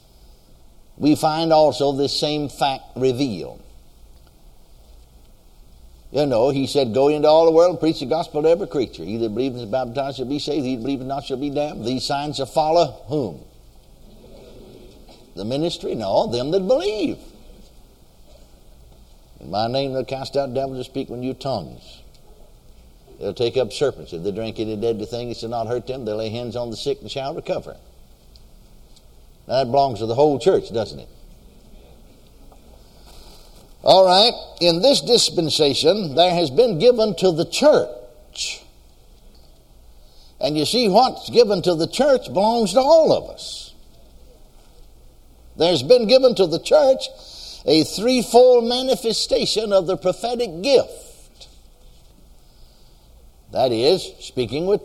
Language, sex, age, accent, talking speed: English, male, 60-79, American, 150 wpm